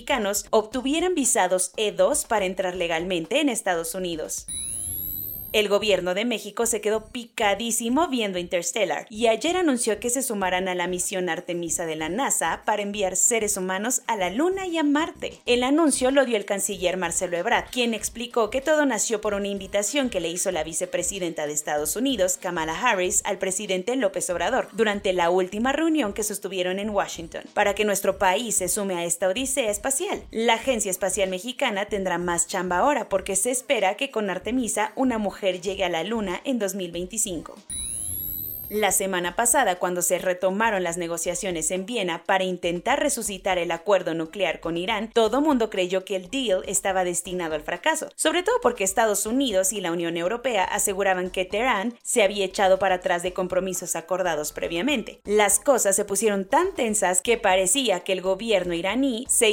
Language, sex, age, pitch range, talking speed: English, female, 30-49, 180-230 Hz, 175 wpm